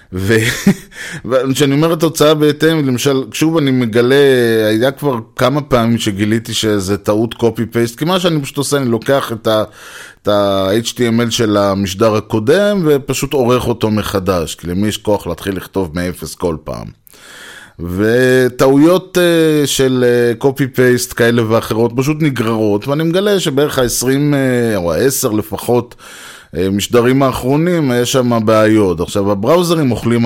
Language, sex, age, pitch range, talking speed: Hebrew, male, 20-39, 105-135 Hz, 125 wpm